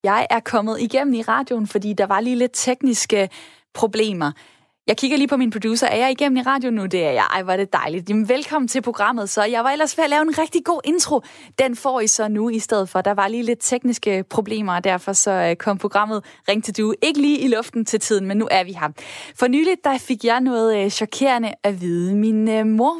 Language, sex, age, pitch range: Danish, female, 20-39, 205-270 Hz